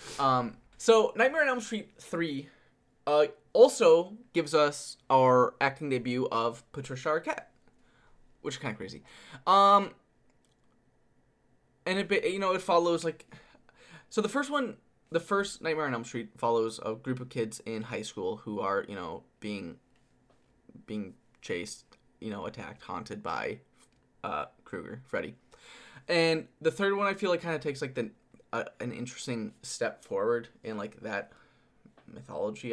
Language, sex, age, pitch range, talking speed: English, male, 20-39, 115-195 Hz, 150 wpm